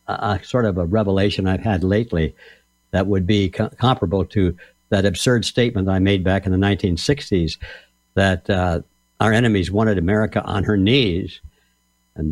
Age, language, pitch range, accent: 60-79, English, 85-110 Hz, American